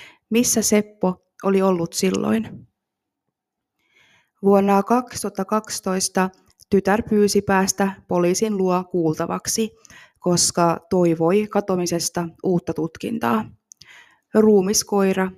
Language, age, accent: Finnish, 20-39, native